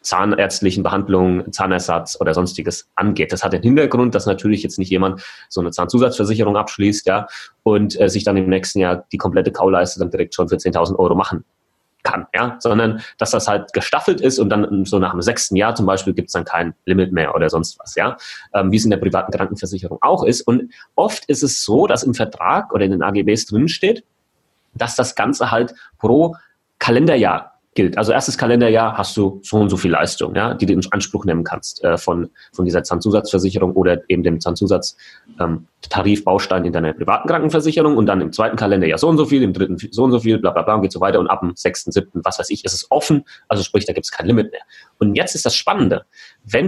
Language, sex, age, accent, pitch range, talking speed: German, male, 30-49, German, 95-110 Hz, 220 wpm